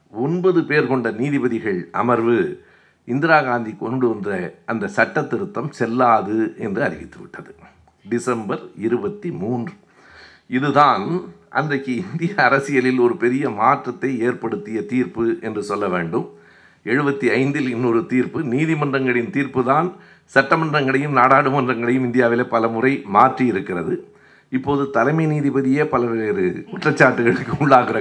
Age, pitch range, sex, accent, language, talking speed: 60-79, 125-150 Hz, male, native, Tamil, 100 wpm